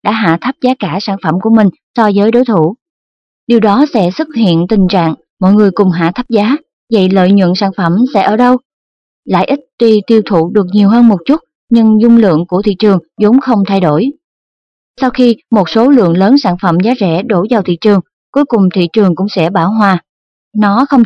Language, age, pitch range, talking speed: Vietnamese, 20-39, 185-240 Hz, 220 wpm